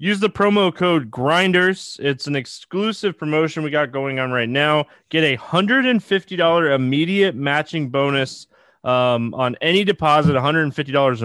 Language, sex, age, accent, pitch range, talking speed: English, male, 20-39, American, 125-160 Hz, 140 wpm